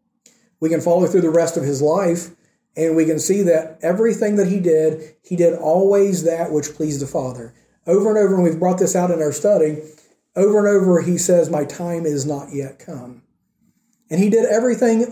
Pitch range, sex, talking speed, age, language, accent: 150-195 Hz, male, 205 wpm, 40-59, English, American